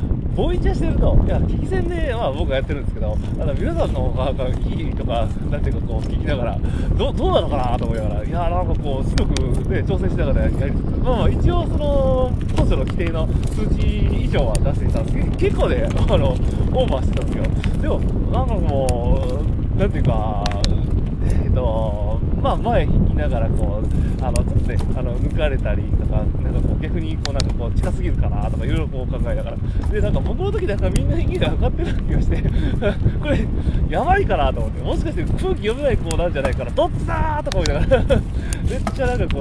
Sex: male